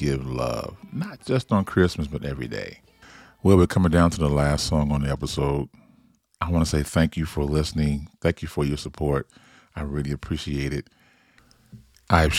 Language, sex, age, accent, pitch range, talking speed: English, male, 40-59, American, 75-95 Hz, 185 wpm